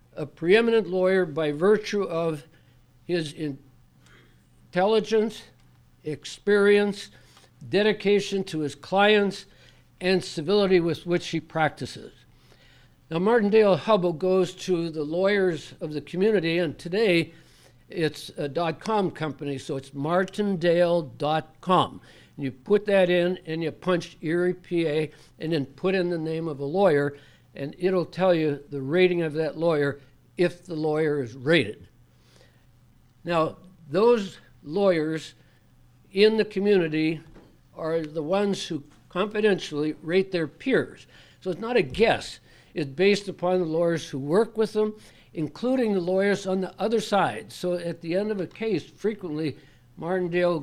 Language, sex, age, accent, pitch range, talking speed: English, male, 60-79, American, 150-190 Hz, 140 wpm